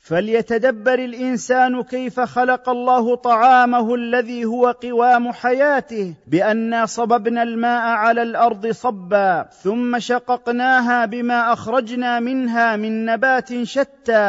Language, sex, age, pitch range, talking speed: Arabic, male, 40-59, 205-245 Hz, 100 wpm